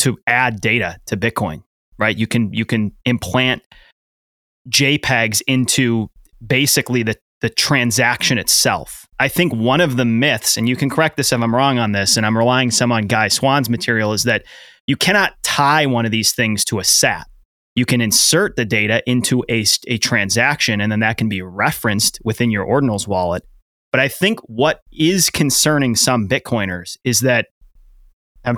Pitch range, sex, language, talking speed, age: 110-140 Hz, male, English, 175 wpm, 30-49